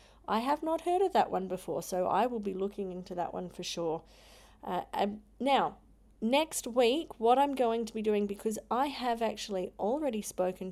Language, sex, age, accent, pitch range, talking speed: English, female, 30-49, Australian, 200-235 Hz, 195 wpm